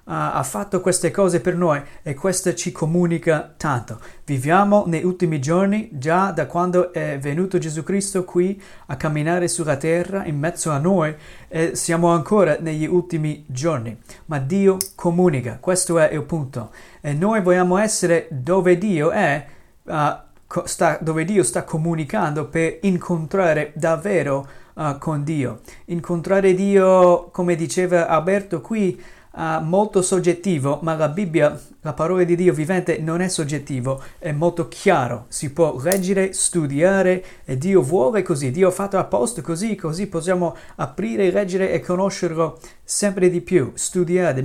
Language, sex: Italian, male